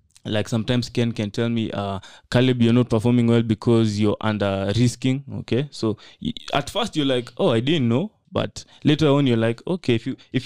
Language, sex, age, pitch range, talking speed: English, male, 20-39, 110-135 Hz, 195 wpm